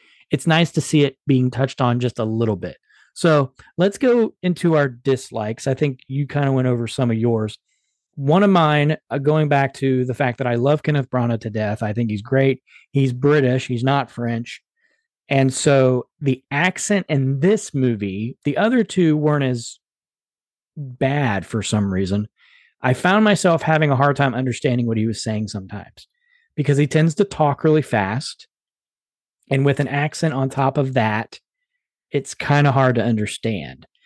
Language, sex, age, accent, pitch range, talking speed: English, male, 40-59, American, 120-155 Hz, 180 wpm